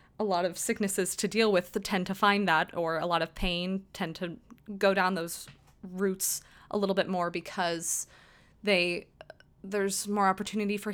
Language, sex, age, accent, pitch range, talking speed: English, female, 20-39, American, 180-225 Hz, 175 wpm